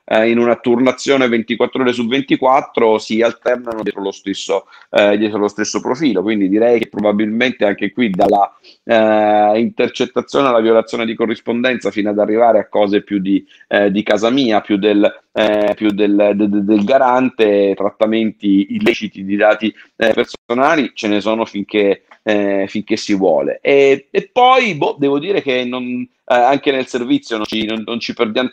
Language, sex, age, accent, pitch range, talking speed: Italian, male, 40-59, native, 105-125 Hz, 170 wpm